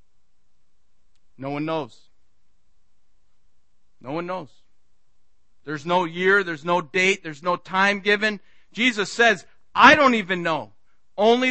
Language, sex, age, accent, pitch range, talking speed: English, male, 50-69, American, 140-175 Hz, 120 wpm